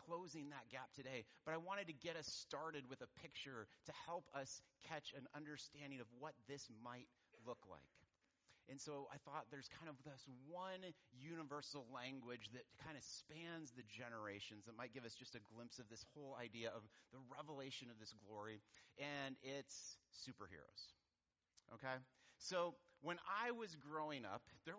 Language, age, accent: English, 30-49, American